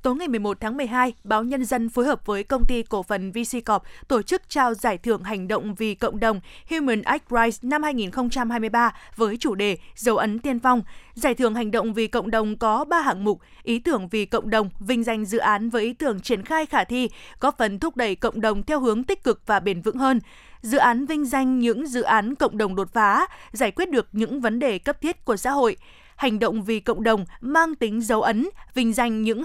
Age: 20-39